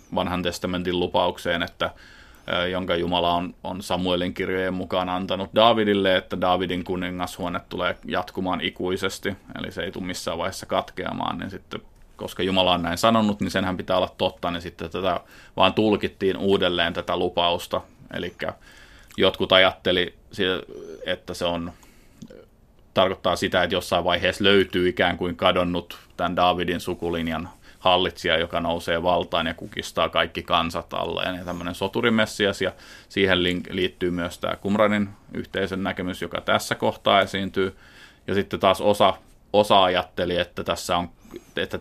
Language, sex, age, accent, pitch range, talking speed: Finnish, male, 30-49, native, 85-95 Hz, 140 wpm